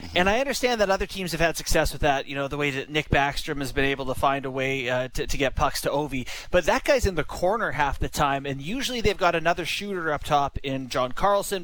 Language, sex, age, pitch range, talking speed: English, male, 30-49, 140-195 Hz, 270 wpm